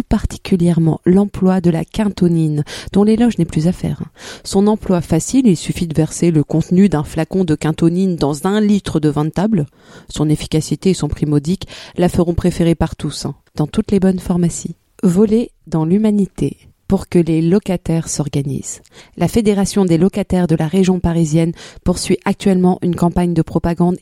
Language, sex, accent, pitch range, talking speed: French, female, French, 160-195 Hz, 170 wpm